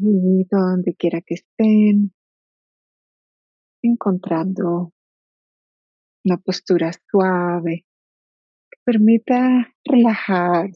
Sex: female